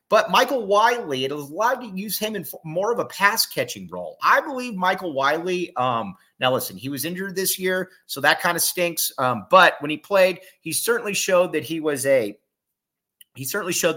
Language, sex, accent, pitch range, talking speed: English, male, American, 140-195 Hz, 195 wpm